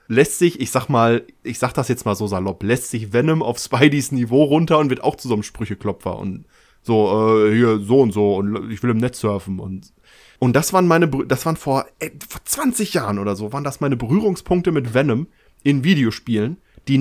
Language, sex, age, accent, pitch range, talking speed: German, male, 20-39, German, 115-160 Hz, 220 wpm